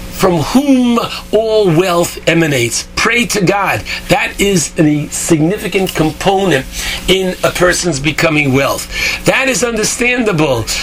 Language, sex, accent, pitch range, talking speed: English, male, American, 145-195 Hz, 115 wpm